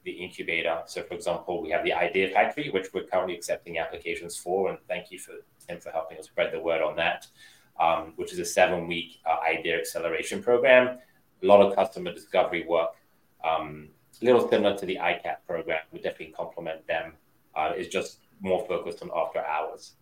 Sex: male